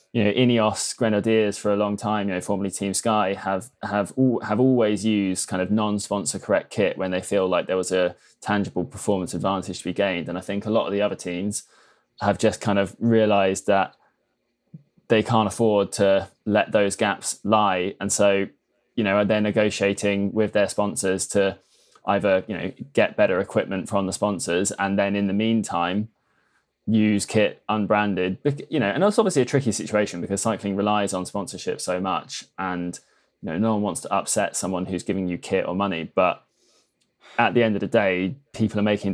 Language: English